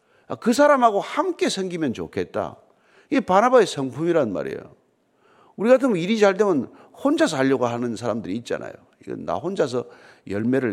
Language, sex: Korean, male